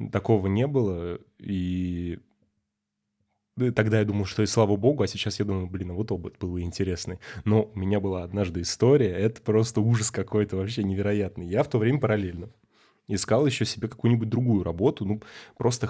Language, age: Russian, 20-39